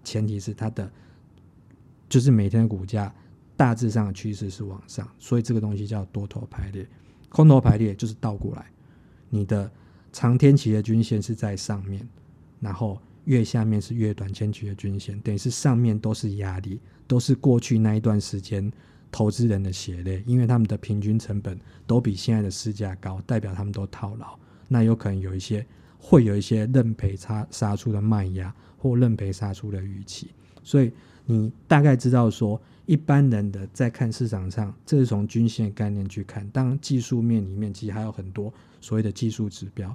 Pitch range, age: 100-120 Hz, 20-39